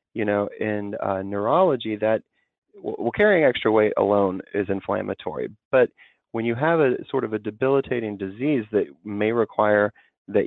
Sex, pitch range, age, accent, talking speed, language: male, 100-120 Hz, 30-49, American, 155 wpm, English